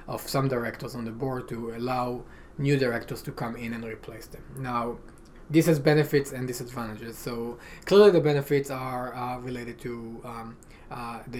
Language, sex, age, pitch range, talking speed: English, male, 20-39, 115-135 Hz, 175 wpm